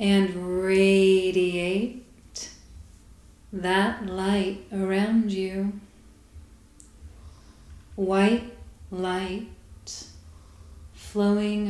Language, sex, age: English, female, 30-49